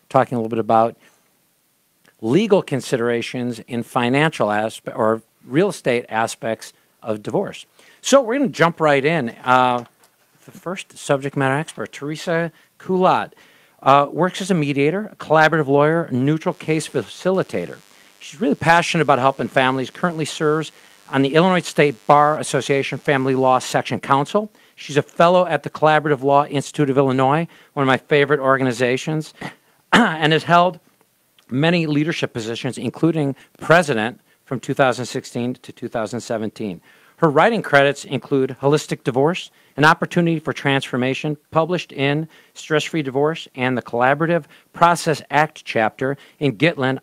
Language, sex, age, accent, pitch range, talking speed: English, male, 50-69, American, 130-160 Hz, 140 wpm